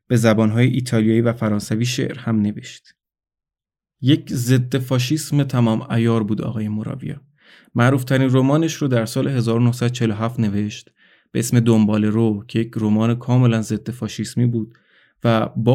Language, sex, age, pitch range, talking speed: Persian, male, 20-39, 110-125 Hz, 140 wpm